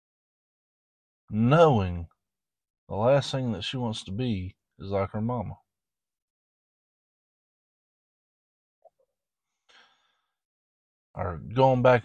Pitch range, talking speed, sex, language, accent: 105-145 Hz, 80 wpm, male, English, American